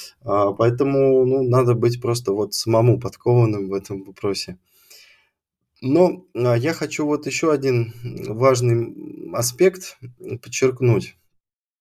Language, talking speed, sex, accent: Russian, 95 wpm, male, native